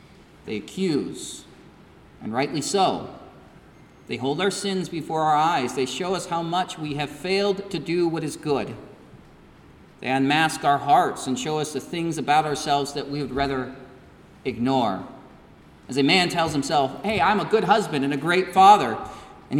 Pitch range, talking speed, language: 140-185 Hz, 170 wpm, English